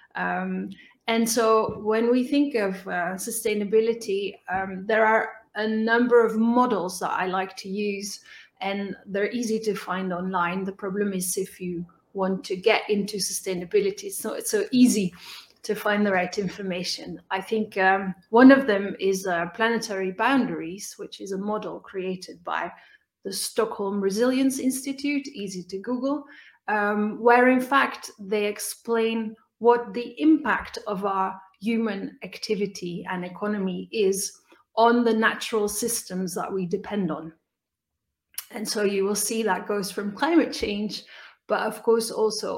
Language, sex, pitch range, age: English, female, 190-230 Hz, 30-49